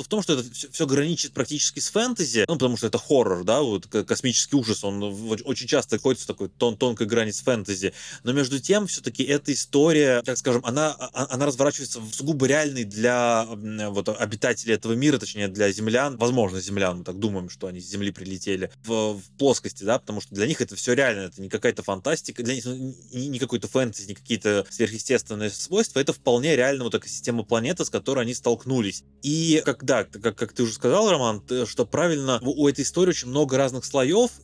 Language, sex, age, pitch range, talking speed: Russian, male, 20-39, 110-140 Hz, 195 wpm